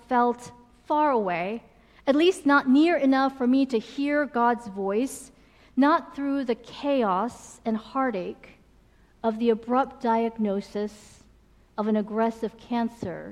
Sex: female